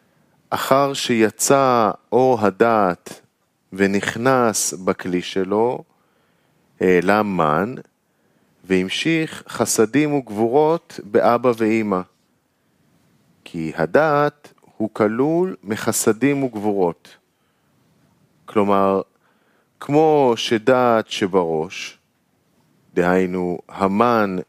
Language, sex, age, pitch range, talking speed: Hebrew, male, 40-59, 95-130 Hz, 65 wpm